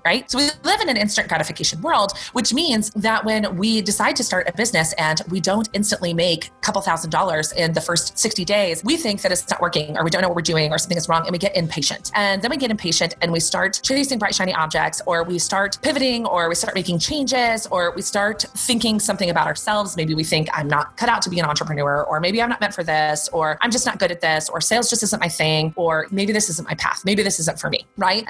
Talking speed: 265 wpm